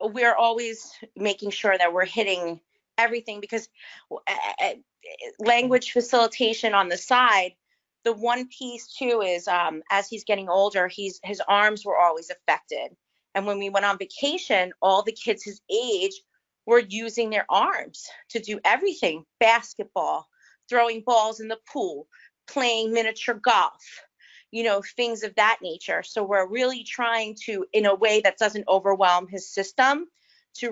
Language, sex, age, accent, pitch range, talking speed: English, female, 30-49, American, 200-250 Hz, 150 wpm